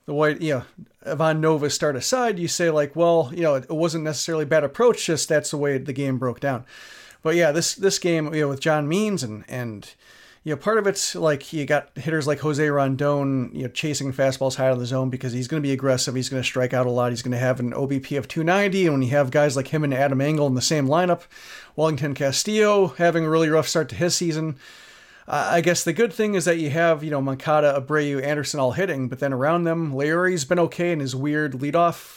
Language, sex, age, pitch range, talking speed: English, male, 40-59, 135-170 Hz, 245 wpm